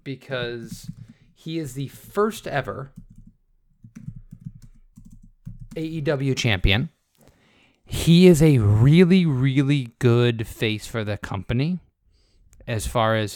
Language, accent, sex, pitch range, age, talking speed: English, American, male, 105-135 Hz, 30-49, 95 wpm